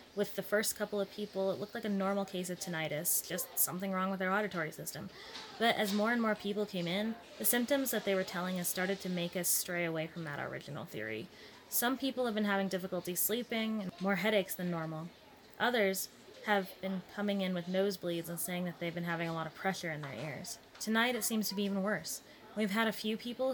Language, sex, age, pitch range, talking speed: English, female, 20-39, 180-215 Hz, 230 wpm